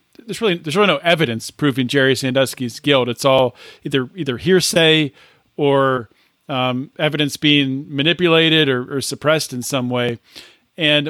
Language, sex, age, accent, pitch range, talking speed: English, male, 40-59, American, 140-190 Hz, 145 wpm